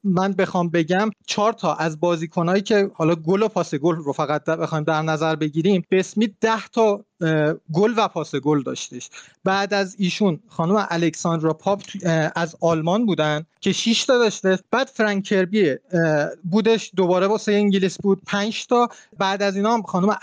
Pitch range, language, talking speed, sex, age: 170-215 Hz, Persian, 160 wpm, male, 30-49